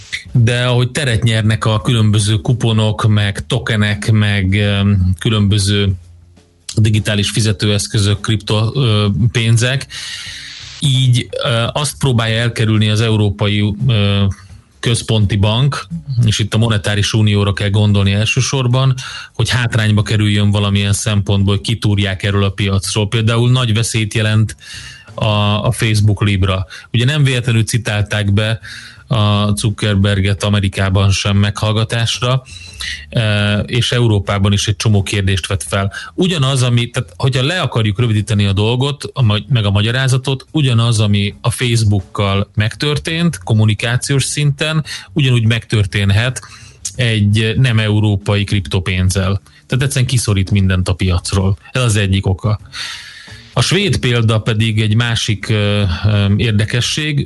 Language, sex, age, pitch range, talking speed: Hungarian, male, 30-49, 100-120 Hz, 110 wpm